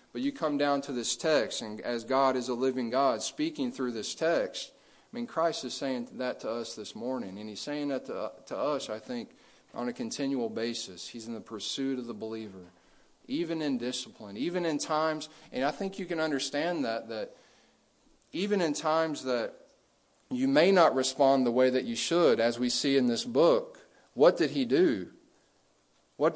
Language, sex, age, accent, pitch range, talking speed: English, male, 40-59, American, 120-155 Hz, 195 wpm